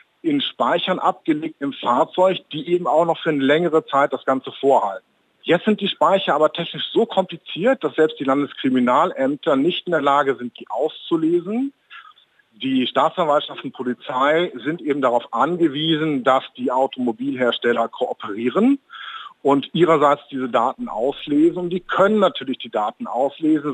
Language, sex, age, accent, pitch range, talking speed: German, male, 50-69, German, 130-180 Hz, 150 wpm